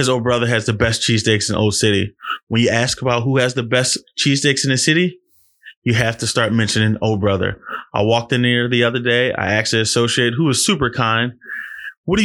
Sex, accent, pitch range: male, American, 120-165 Hz